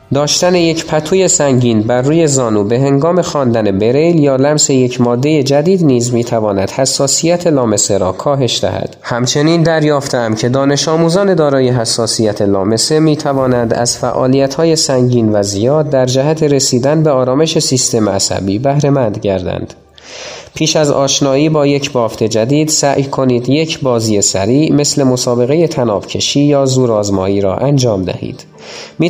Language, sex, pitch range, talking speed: Persian, male, 115-150 Hz, 140 wpm